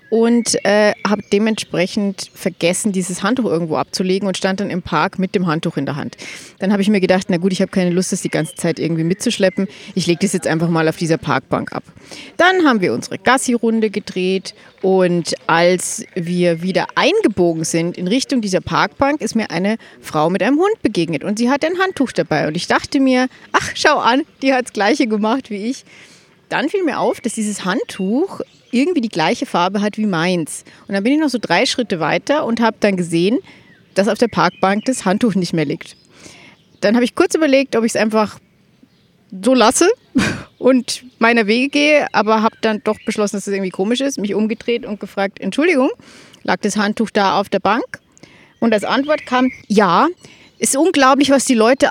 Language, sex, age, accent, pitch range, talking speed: German, female, 30-49, German, 185-255 Hz, 200 wpm